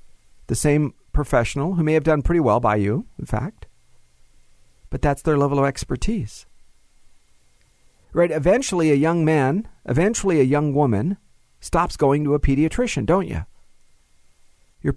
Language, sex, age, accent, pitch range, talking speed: English, male, 50-69, American, 130-170 Hz, 145 wpm